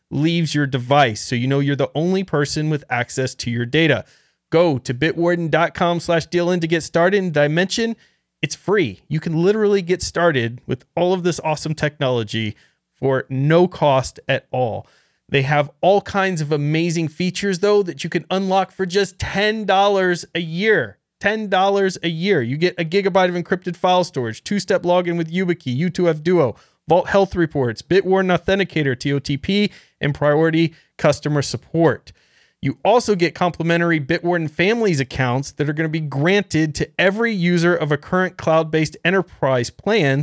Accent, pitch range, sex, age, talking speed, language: American, 135-180 Hz, male, 30-49, 165 wpm, English